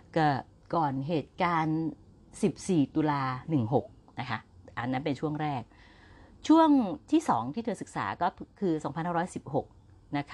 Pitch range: 120-180 Hz